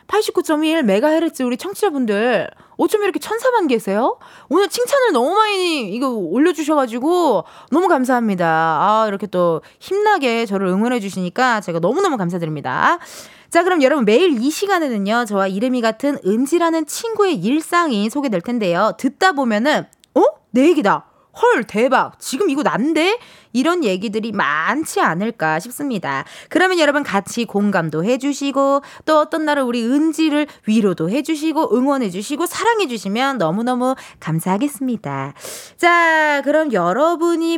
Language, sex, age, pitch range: Korean, female, 20-39, 225-345 Hz